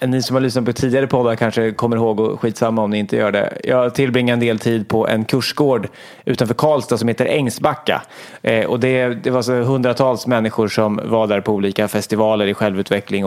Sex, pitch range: male, 110-135 Hz